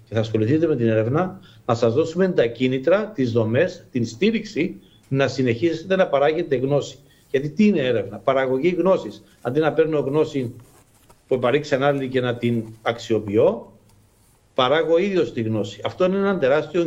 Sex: male